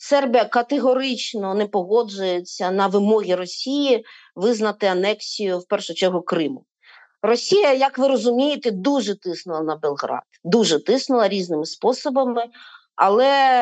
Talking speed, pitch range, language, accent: 110 wpm, 185-240 Hz, Ukrainian, native